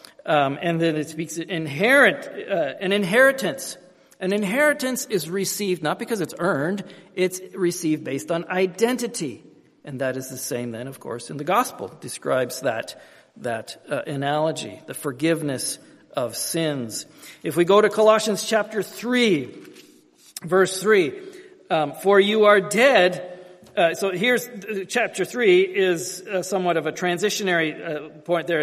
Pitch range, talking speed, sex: 165-225 Hz, 155 wpm, male